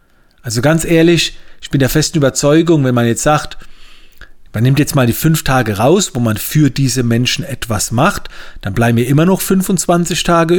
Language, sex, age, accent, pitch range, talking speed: German, male, 40-59, German, 115-155 Hz, 195 wpm